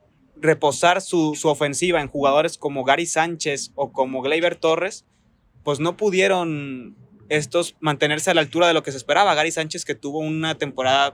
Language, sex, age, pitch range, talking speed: Spanish, male, 20-39, 140-160 Hz, 170 wpm